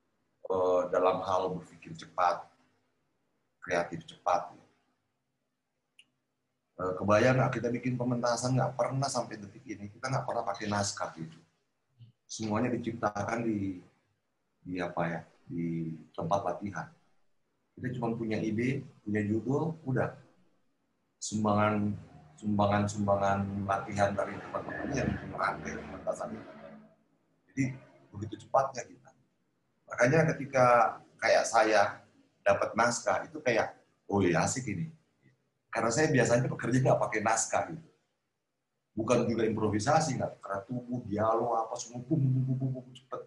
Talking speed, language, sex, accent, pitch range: 115 wpm, English, male, Indonesian, 100-125 Hz